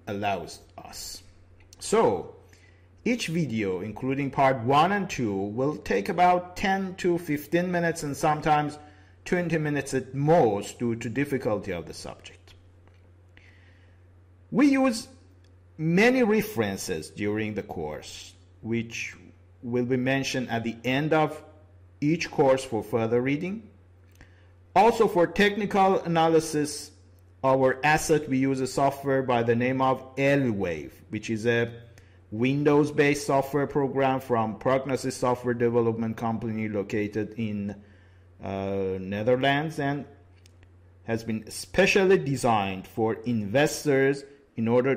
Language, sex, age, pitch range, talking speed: English, male, 50-69, 95-145 Hz, 115 wpm